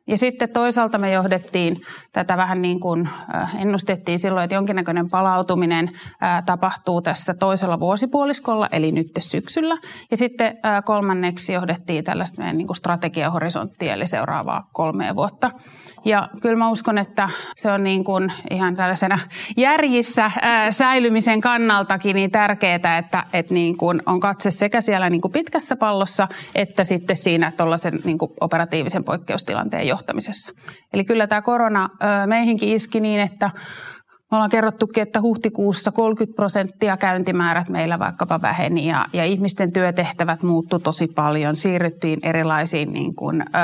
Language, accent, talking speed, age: Finnish, native, 135 wpm, 30-49